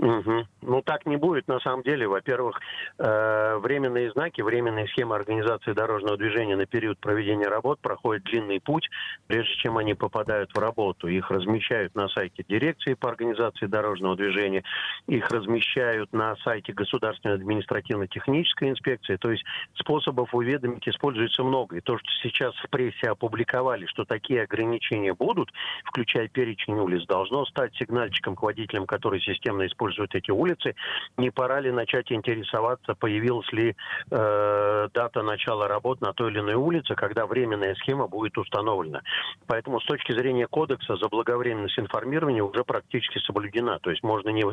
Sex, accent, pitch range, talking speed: male, native, 105-120 Hz, 150 wpm